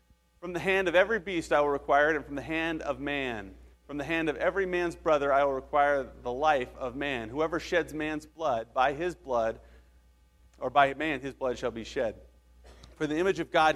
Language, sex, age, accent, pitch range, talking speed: English, male, 40-59, American, 115-170 Hz, 220 wpm